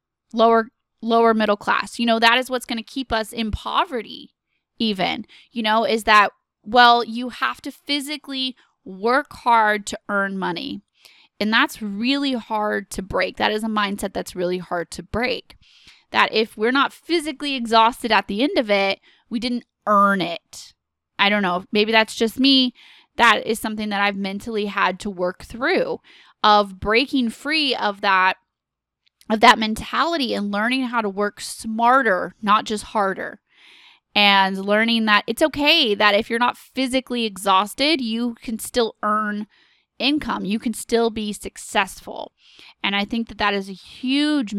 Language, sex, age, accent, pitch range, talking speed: English, female, 10-29, American, 205-250 Hz, 165 wpm